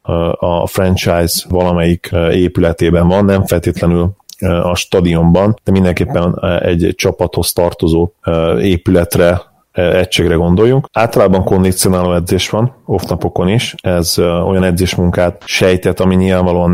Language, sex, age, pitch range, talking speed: Hungarian, male, 30-49, 85-95 Hz, 105 wpm